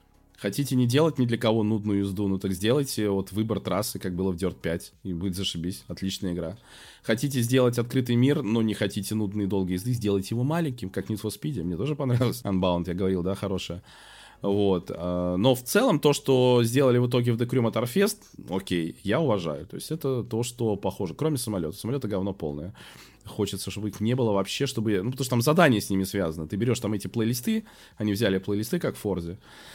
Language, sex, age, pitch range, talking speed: Russian, male, 20-39, 95-125 Hz, 205 wpm